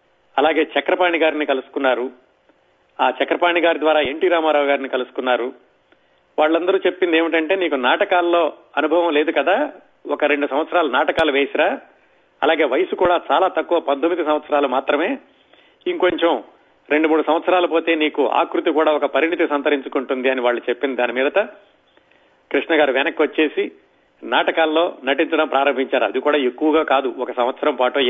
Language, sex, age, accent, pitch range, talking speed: Telugu, male, 40-59, native, 145-170 Hz, 135 wpm